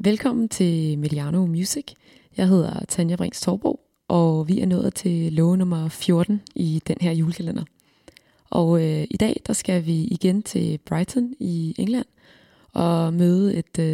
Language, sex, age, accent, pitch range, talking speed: Danish, female, 20-39, native, 160-190 Hz, 150 wpm